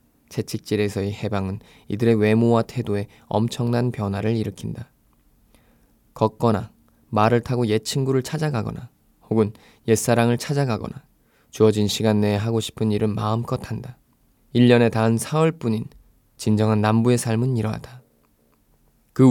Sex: male